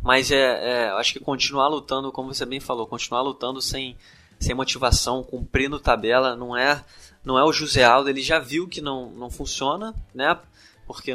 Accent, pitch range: Brazilian, 120-145 Hz